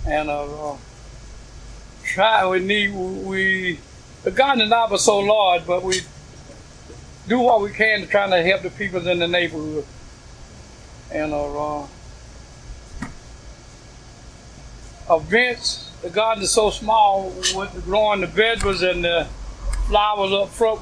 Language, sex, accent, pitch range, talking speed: English, male, American, 165-205 Hz, 135 wpm